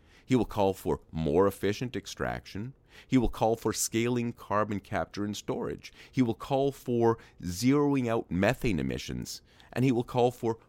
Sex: male